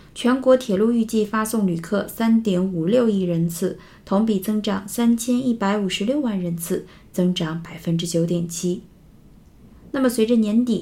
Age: 20-39